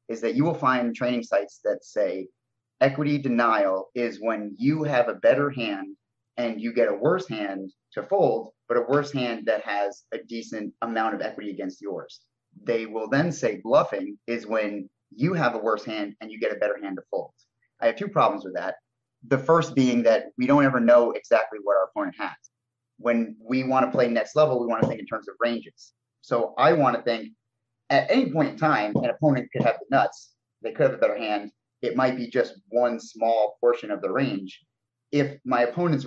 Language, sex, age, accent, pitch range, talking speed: English, male, 30-49, American, 115-135 Hz, 215 wpm